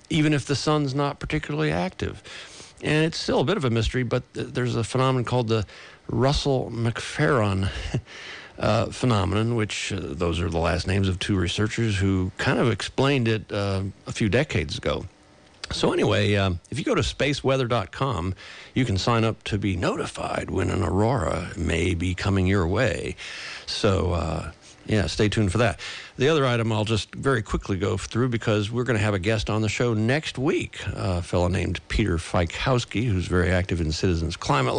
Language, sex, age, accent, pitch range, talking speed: English, male, 50-69, American, 95-120 Hz, 185 wpm